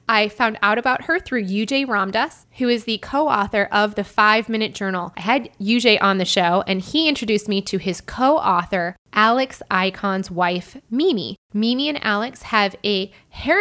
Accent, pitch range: American, 195-240 Hz